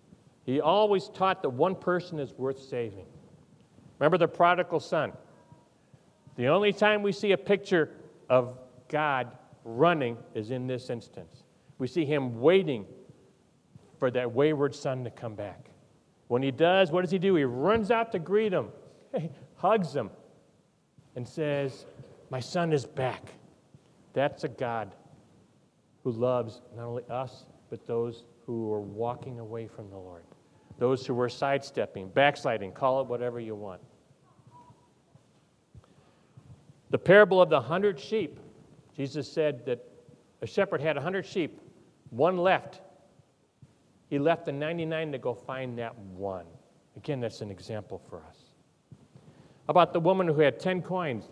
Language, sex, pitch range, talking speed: English, male, 125-180 Hz, 145 wpm